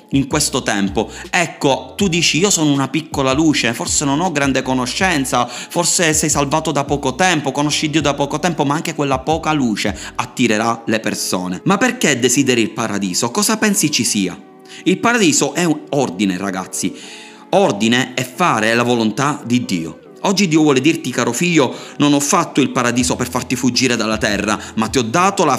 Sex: male